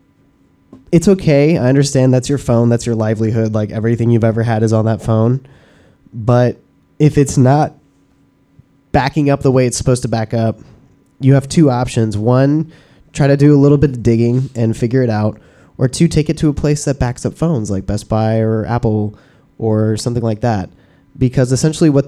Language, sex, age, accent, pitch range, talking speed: English, male, 20-39, American, 110-140 Hz, 195 wpm